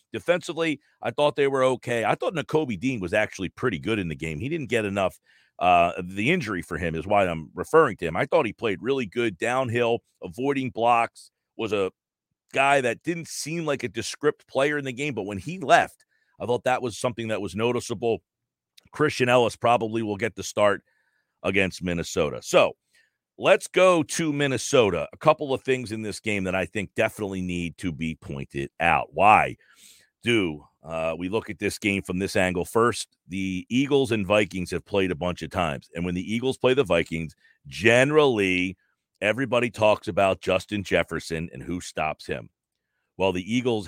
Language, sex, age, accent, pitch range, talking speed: English, male, 40-59, American, 90-125 Hz, 190 wpm